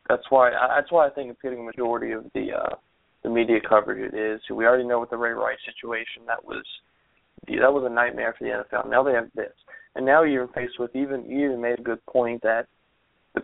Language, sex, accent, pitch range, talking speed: English, male, American, 115-135 Hz, 235 wpm